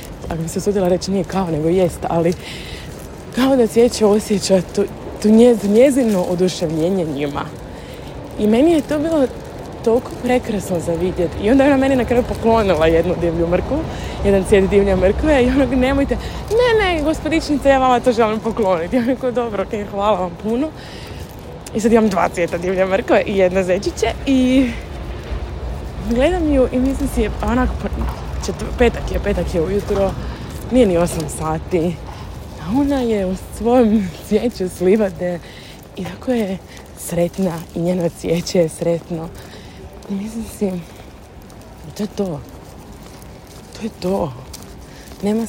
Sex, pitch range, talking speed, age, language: female, 175-240 Hz, 150 wpm, 20-39, Croatian